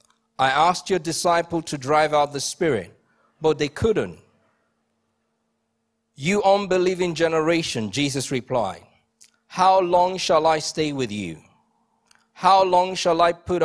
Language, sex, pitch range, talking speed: English, male, 150-195 Hz, 125 wpm